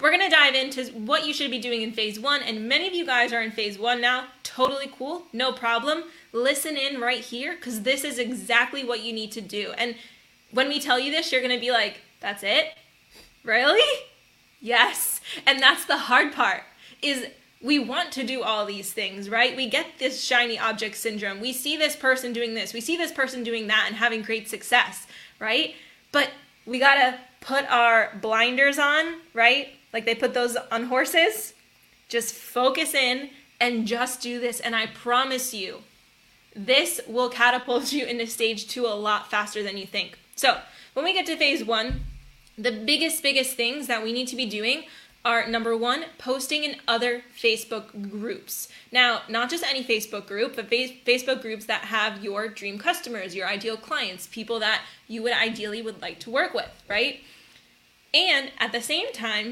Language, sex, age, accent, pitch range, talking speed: English, female, 10-29, American, 225-275 Hz, 190 wpm